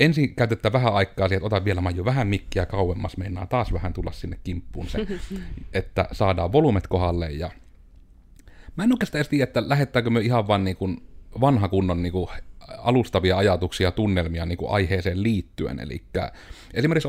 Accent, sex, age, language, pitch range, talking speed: native, male, 30-49, Finnish, 90-115 Hz, 160 wpm